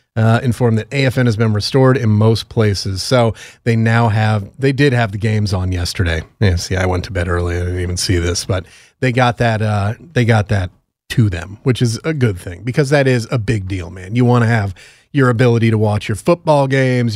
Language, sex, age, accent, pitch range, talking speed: English, male, 30-49, American, 105-125 Hz, 225 wpm